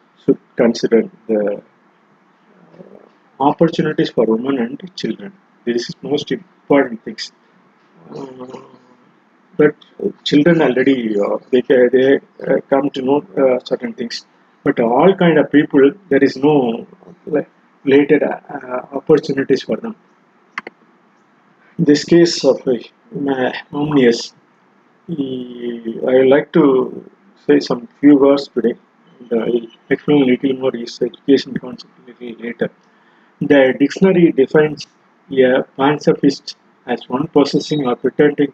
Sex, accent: male, native